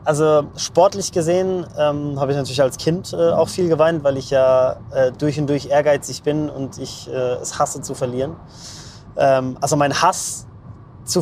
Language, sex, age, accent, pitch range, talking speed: German, male, 20-39, German, 130-155 Hz, 180 wpm